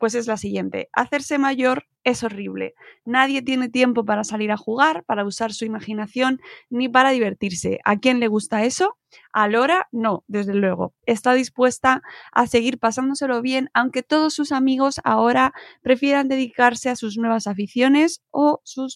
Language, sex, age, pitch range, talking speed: Spanish, female, 20-39, 210-280 Hz, 160 wpm